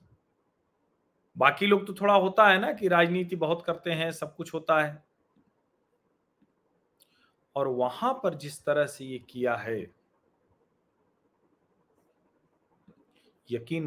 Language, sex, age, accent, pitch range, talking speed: Hindi, male, 40-59, native, 140-160 Hz, 115 wpm